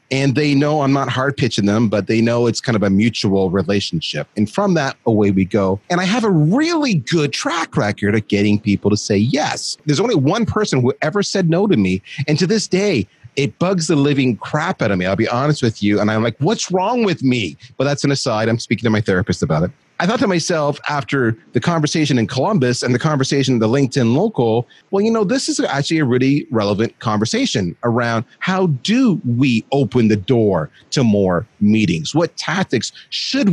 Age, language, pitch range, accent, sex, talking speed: 30-49, English, 105-160 Hz, American, male, 215 wpm